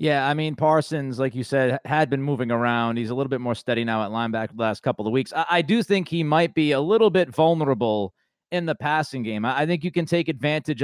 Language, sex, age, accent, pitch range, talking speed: English, male, 30-49, American, 125-160 Hz, 260 wpm